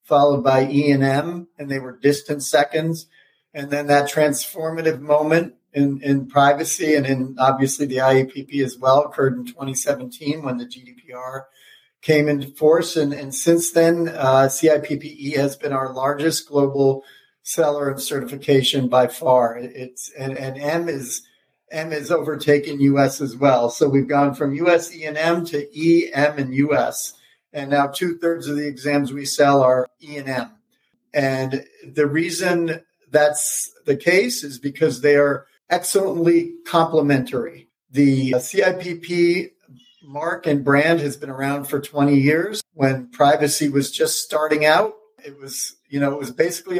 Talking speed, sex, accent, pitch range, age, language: 150 wpm, male, American, 135-160 Hz, 50-69, English